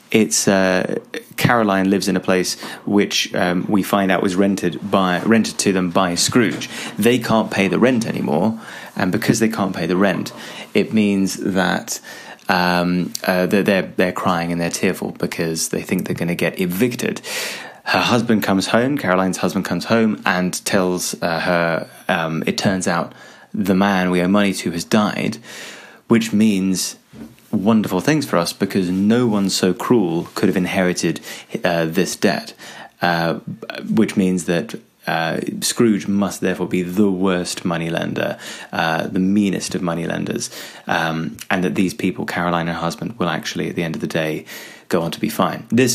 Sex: male